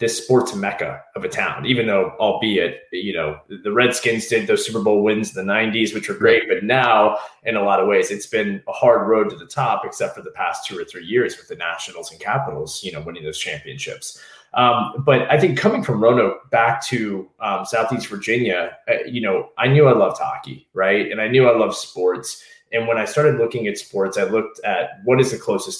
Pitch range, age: 100-150 Hz, 20-39